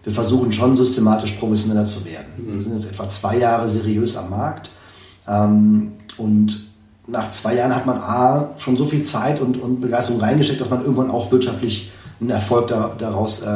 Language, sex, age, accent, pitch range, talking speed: German, male, 30-49, German, 105-125 Hz, 170 wpm